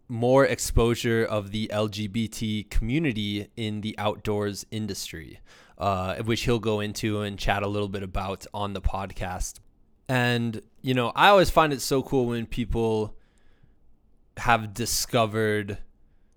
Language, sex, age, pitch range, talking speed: English, male, 20-39, 100-120 Hz, 135 wpm